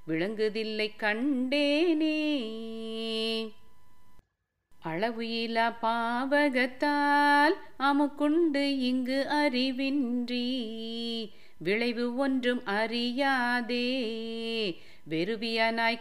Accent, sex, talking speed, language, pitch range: native, female, 45 wpm, Tamil, 225-275 Hz